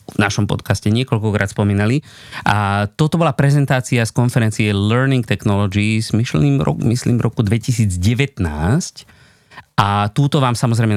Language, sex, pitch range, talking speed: Slovak, male, 100-130 Hz, 115 wpm